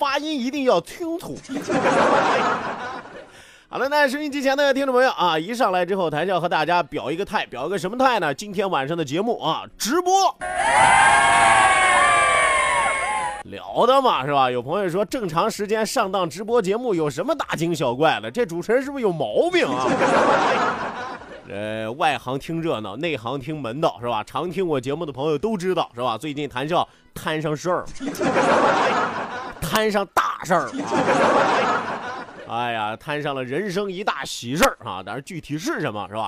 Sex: male